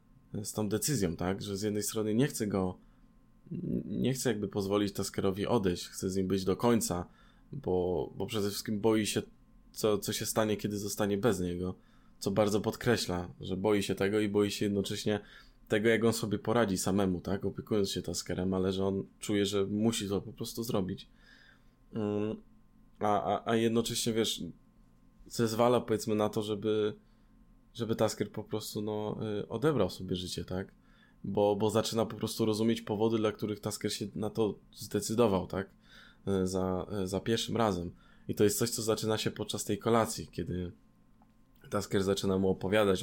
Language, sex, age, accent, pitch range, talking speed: Polish, male, 20-39, native, 95-110 Hz, 170 wpm